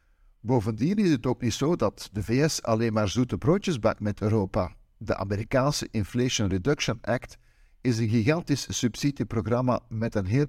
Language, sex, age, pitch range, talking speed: Dutch, male, 60-79, 105-130 Hz, 160 wpm